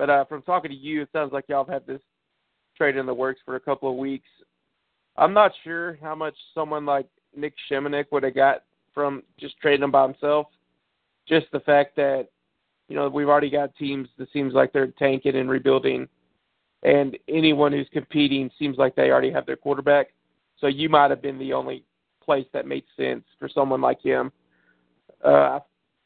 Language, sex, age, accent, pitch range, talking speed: English, male, 30-49, American, 135-150 Hz, 195 wpm